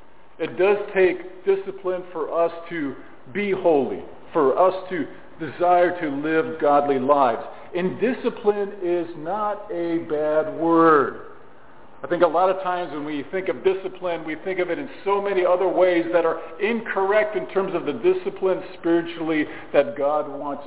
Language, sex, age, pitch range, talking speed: English, male, 50-69, 160-190 Hz, 165 wpm